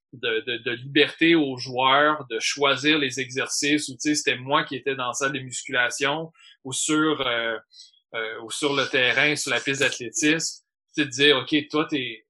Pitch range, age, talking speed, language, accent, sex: 130-150 Hz, 30-49, 175 wpm, French, Canadian, male